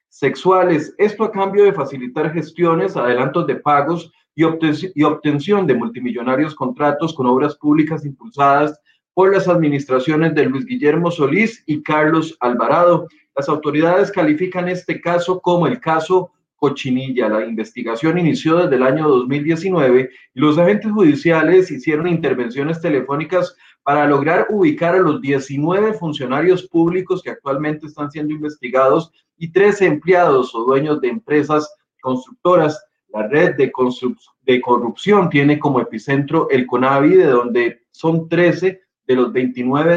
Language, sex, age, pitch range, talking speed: Spanish, male, 30-49, 135-170 Hz, 135 wpm